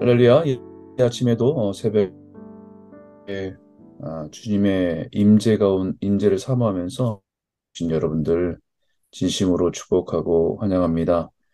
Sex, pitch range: male, 95-130 Hz